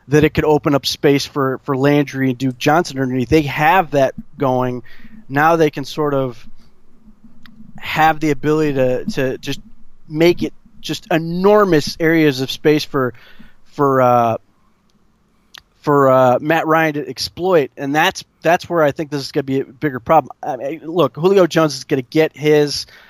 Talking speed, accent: 175 wpm, American